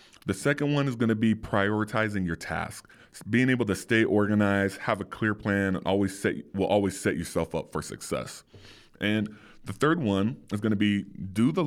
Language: English